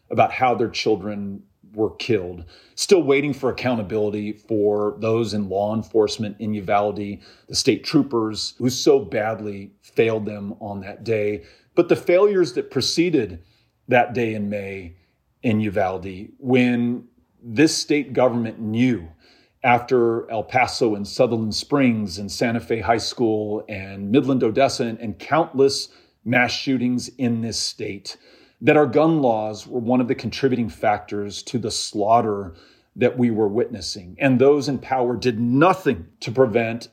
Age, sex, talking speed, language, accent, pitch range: 40-59, male, 145 wpm, English, American, 105-135 Hz